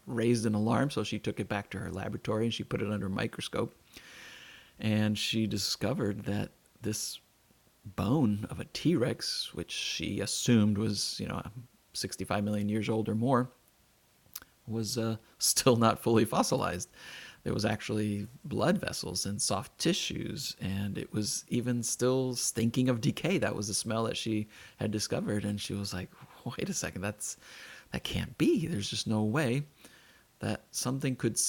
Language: English